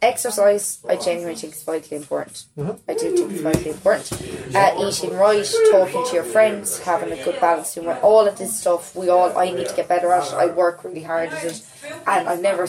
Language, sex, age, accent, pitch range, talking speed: English, female, 20-39, Irish, 170-230 Hz, 215 wpm